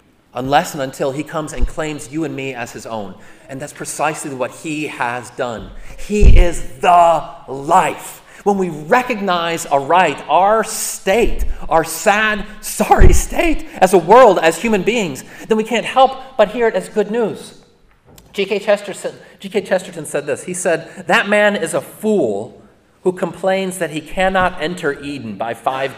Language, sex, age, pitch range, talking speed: English, male, 30-49, 140-195 Hz, 165 wpm